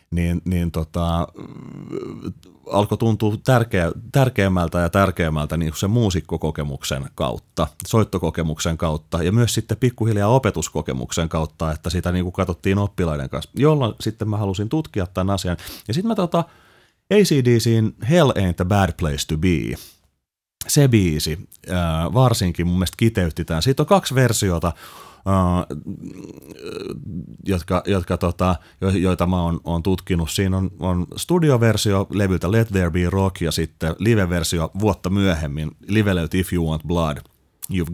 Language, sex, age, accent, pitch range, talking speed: Finnish, male, 30-49, native, 85-110 Hz, 140 wpm